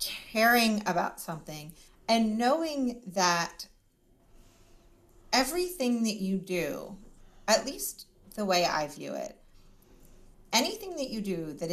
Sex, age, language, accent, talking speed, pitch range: female, 30-49, English, American, 115 wpm, 165-210 Hz